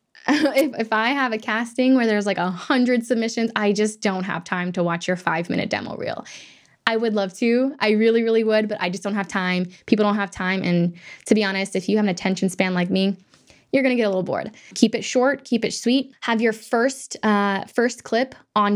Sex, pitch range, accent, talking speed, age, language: female, 190-250 Hz, American, 235 wpm, 10-29, English